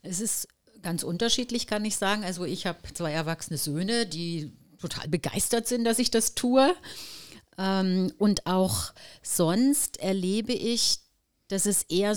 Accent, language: German, German